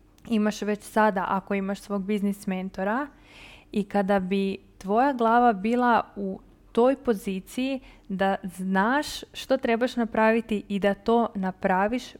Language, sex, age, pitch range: Croatian, female, 20-39, 195-225 Hz